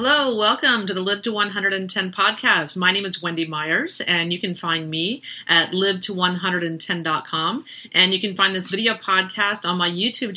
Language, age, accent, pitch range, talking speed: English, 30-49, American, 165-195 Hz, 175 wpm